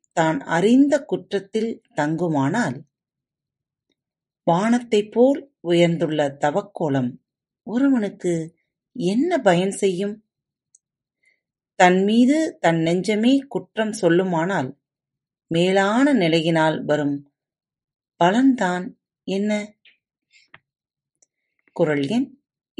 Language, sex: Tamil, female